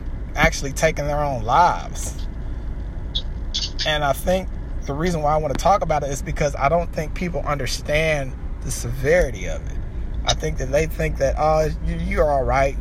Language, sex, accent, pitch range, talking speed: English, male, American, 95-145 Hz, 175 wpm